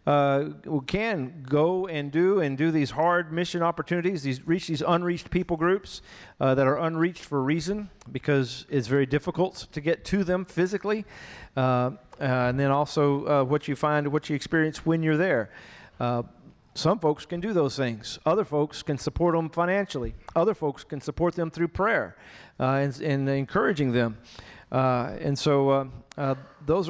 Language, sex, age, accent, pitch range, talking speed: English, male, 40-59, American, 135-170 Hz, 175 wpm